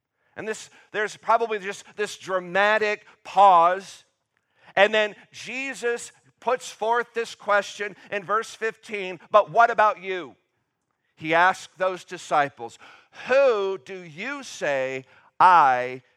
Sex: male